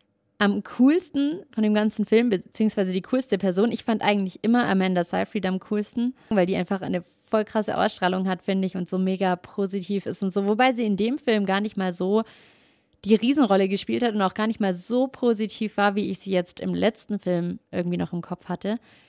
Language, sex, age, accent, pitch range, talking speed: German, female, 30-49, German, 195-235 Hz, 215 wpm